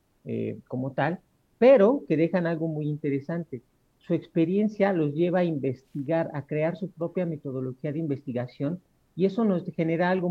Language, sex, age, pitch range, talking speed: Spanish, male, 50-69, 140-180 Hz, 155 wpm